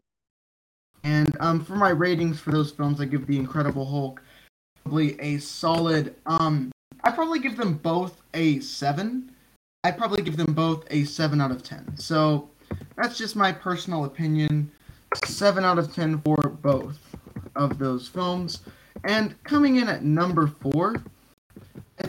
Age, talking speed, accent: 10-29, 150 wpm, American